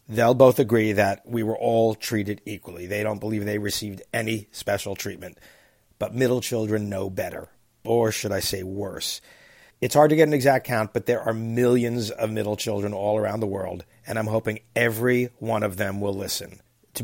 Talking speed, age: 195 wpm, 50-69